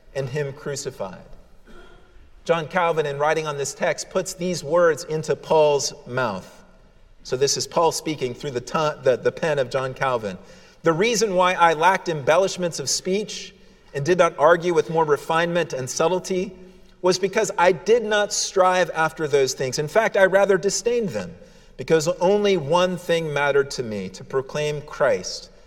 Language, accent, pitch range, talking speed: English, American, 140-215 Hz, 170 wpm